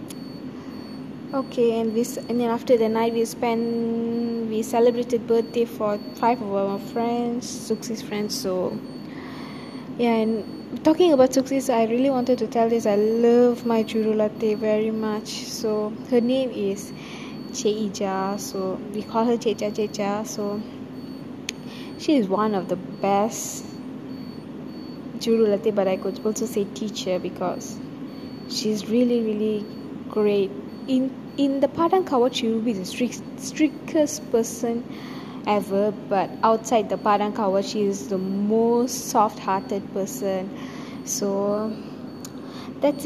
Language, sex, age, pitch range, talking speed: English, female, 20-39, 215-260 Hz, 135 wpm